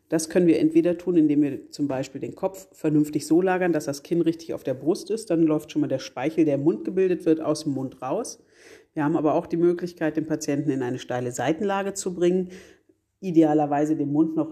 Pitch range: 150-175 Hz